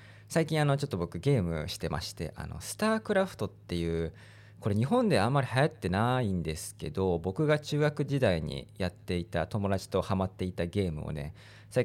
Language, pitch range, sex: Japanese, 85-115 Hz, male